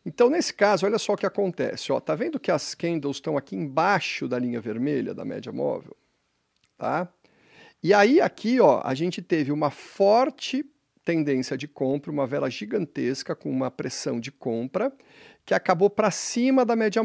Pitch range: 150-205 Hz